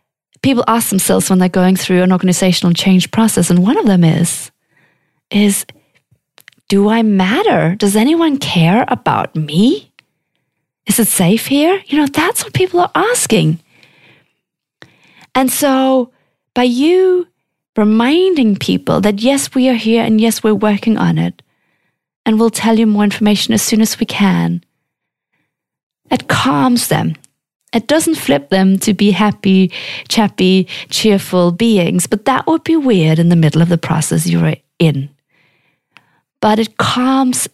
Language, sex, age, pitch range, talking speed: English, female, 30-49, 170-230 Hz, 150 wpm